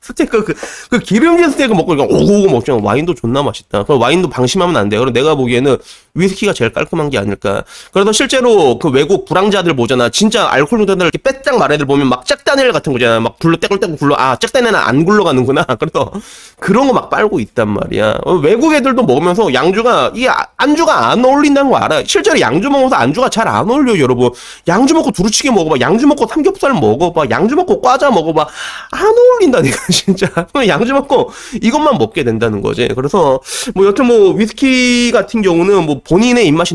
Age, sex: 30-49, male